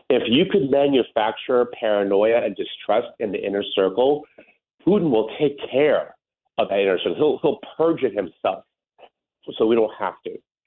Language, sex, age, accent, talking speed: English, male, 40-59, American, 165 wpm